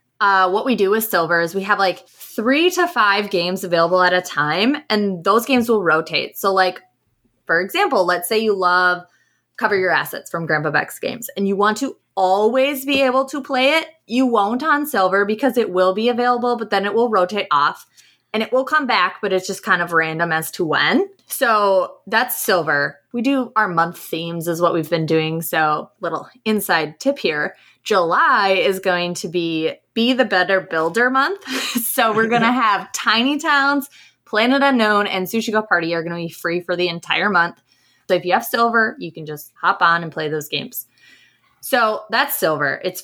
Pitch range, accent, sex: 170-235 Hz, American, female